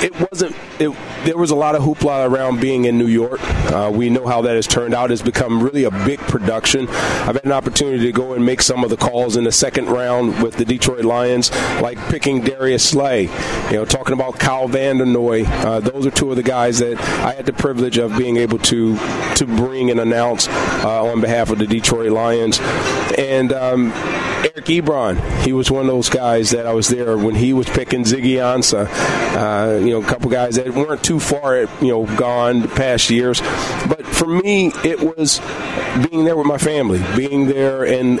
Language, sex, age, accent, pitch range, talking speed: English, male, 40-59, American, 115-130 Hz, 210 wpm